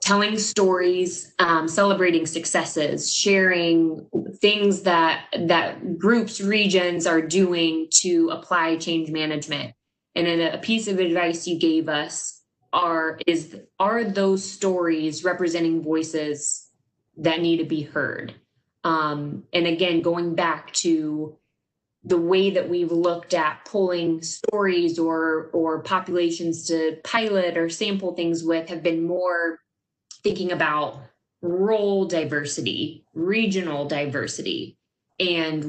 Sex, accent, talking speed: female, American, 120 wpm